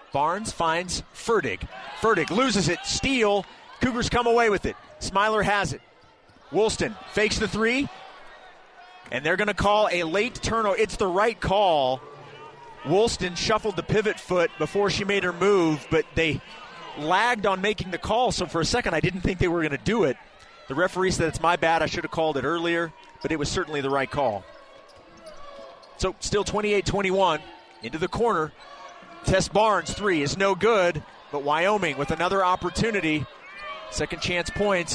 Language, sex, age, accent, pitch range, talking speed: English, male, 30-49, American, 165-215 Hz, 170 wpm